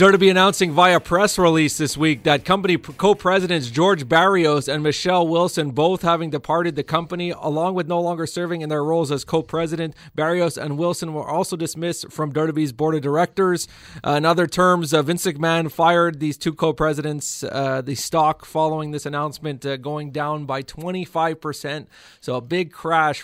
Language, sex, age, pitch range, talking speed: English, male, 30-49, 145-170 Hz, 180 wpm